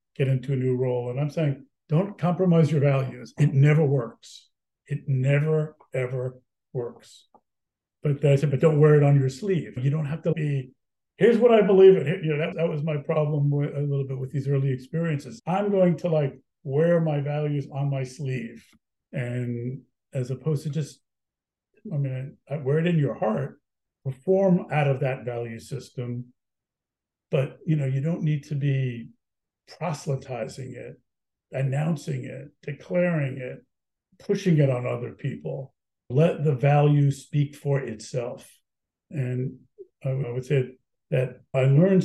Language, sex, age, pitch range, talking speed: English, male, 50-69, 130-155 Hz, 165 wpm